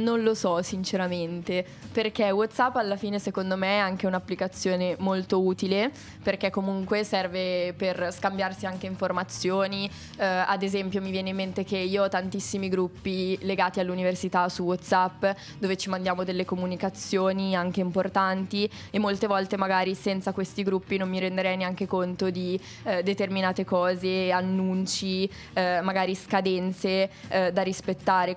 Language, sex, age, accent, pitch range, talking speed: Italian, female, 20-39, native, 190-210 Hz, 145 wpm